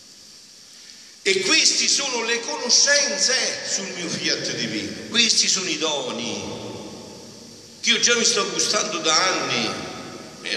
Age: 50-69